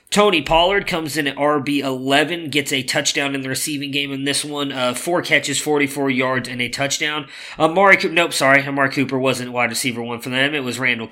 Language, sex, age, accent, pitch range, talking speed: English, male, 20-39, American, 125-150 Hz, 215 wpm